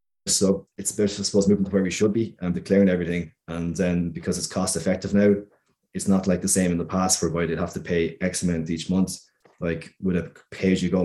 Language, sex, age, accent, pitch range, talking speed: English, male, 20-39, Irish, 90-100 Hz, 230 wpm